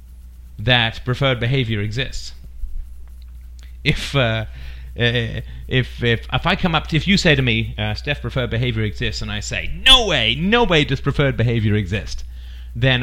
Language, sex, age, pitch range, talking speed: English, male, 40-59, 100-135 Hz, 165 wpm